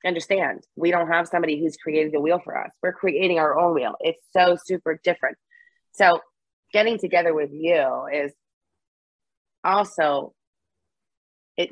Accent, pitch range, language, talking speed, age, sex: American, 140-170 Hz, English, 145 wpm, 30-49, female